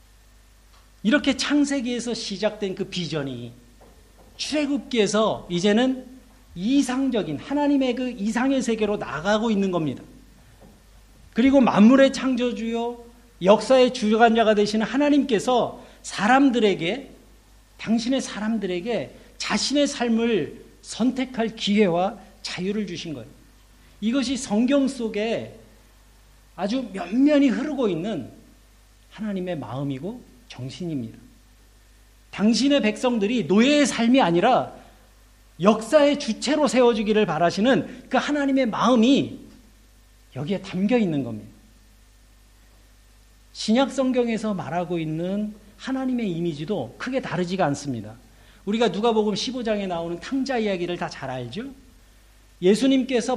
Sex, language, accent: male, Korean, native